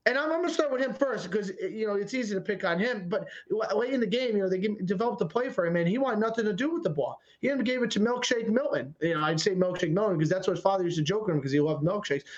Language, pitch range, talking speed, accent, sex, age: English, 185-245 Hz, 320 wpm, American, male, 30-49